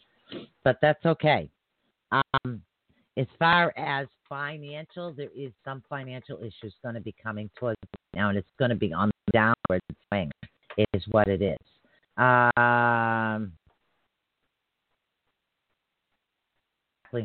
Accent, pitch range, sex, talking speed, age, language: American, 115-140 Hz, female, 115 wpm, 40-59, English